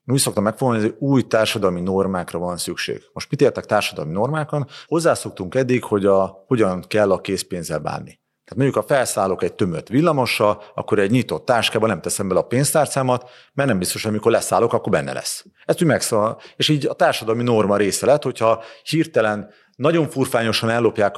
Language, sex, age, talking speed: Hungarian, male, 40-59, 175 wpm